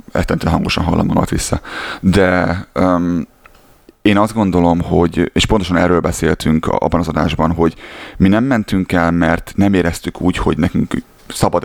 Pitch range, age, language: 85-95 Hz, 30-49, Hungarian